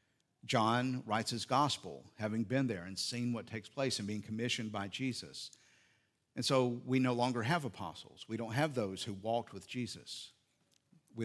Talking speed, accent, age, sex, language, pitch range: 175 wpm, American, 50-69, male, English, 105-125 Hz